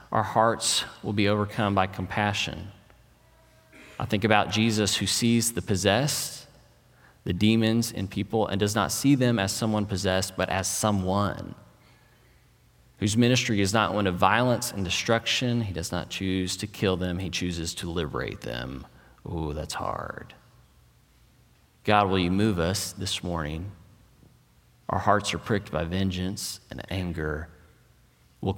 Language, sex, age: English, male, 30-49